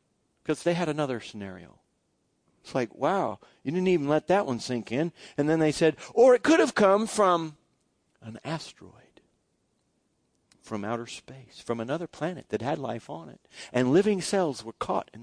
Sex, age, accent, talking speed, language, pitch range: male, 50-69, American, 175 wpm, English, 120-195 Hz